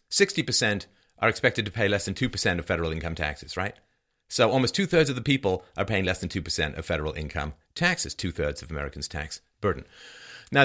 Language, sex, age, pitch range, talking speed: English, male, 40-59, 85-125 Hz, 185 wpm